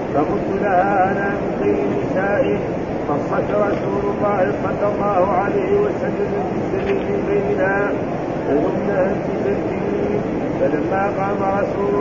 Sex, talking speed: male, 105 wpm